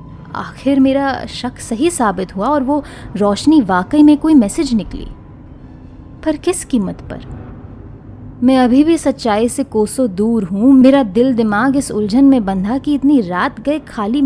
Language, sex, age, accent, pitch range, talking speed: Hindi, female, 20-39, native, 185-270 Hz, 160 wpm